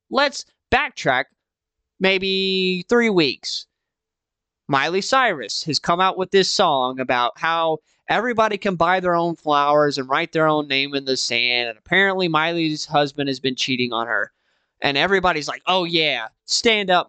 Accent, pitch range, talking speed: American, 145-195 Hz, 160 wpm